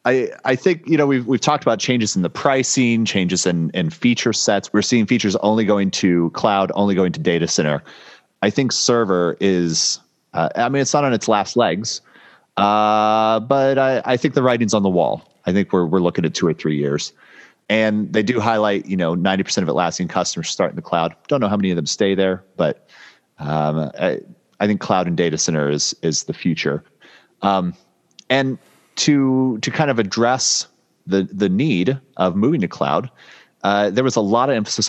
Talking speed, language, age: 205 wpm, English, 30-49